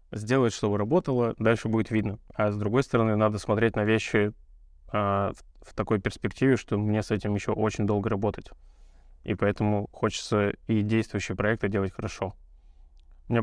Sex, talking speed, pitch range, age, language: male, 165 wpm, 100-120 Hz, 20-39, Russian